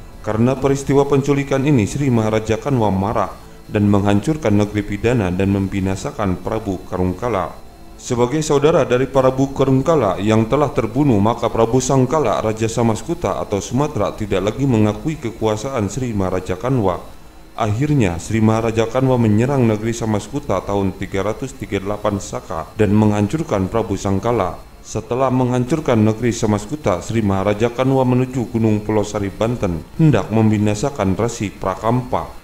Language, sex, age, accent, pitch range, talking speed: Indonesian, male, 30-49, native, 105-135 Hz, 125 wpm